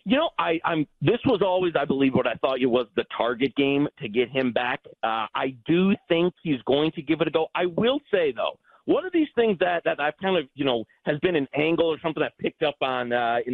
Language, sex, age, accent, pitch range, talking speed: English, male, 40-59, American, 150-200 Hz, 260 wpm